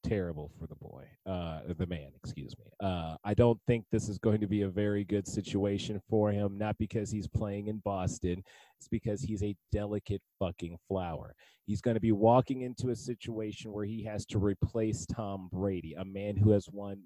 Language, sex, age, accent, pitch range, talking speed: English, male, 30-49, American, 95-115 Hz, 200 wpm